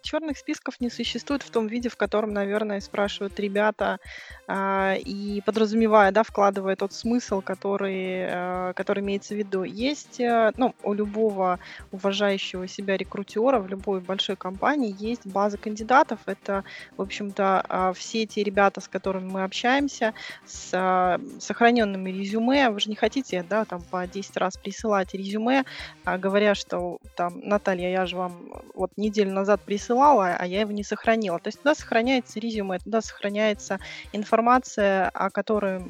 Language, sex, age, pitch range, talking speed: Russian, female, 20-39, 195-235 Hz, 155 wpm